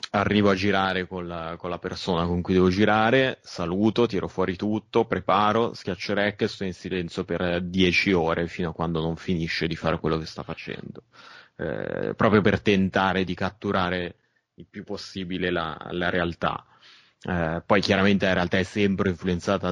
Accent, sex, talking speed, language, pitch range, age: native, male, 165 wpm, Italian, 85-100 Hz, 20-39